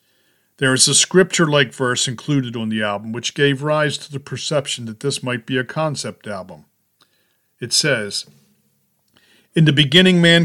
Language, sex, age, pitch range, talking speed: English, male, 50-69, 115-145 Hz, 160 wpm